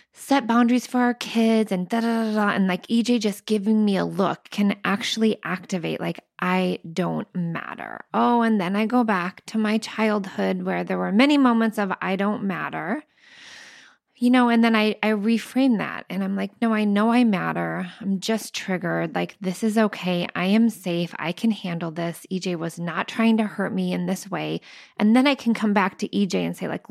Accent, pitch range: American, 185-225 Hz